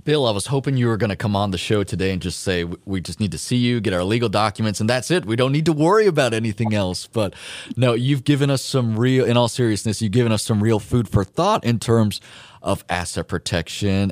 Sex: male